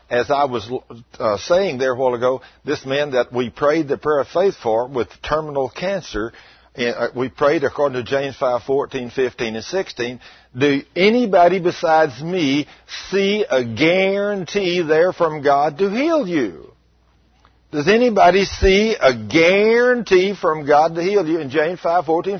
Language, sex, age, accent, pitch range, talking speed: English, male, 60-79, American, 145-205 Hz, 160 wpm